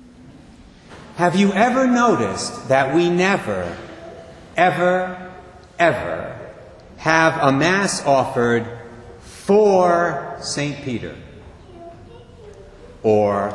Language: English